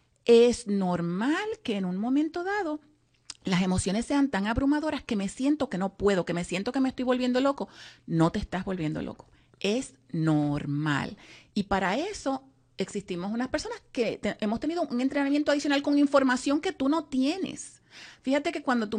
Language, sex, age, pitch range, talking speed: Spanish, female, 40-59, 210-290 Hz, 175 wpm